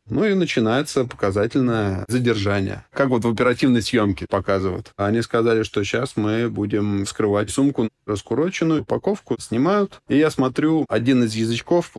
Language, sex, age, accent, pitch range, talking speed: Russian, male, 20-39, native, 100-125 Hz, 140 wpm